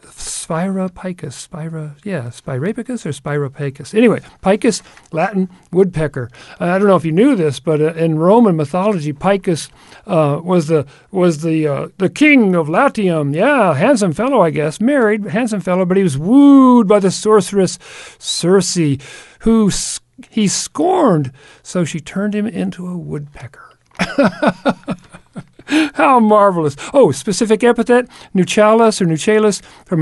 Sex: male